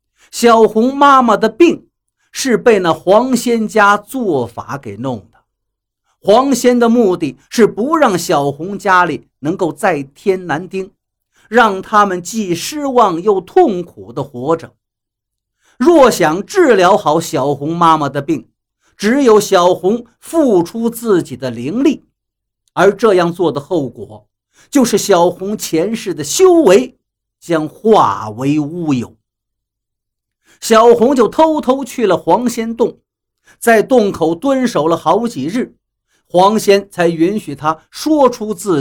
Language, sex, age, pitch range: Chinese, male, 50-69, 145-230 Hz